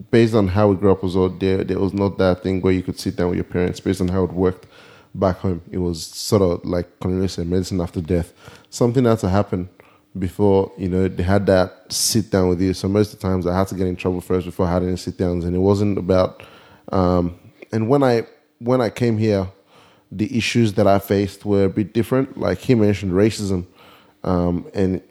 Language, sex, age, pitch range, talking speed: English, male, 20-39, 95-105 Hz, 225 wpm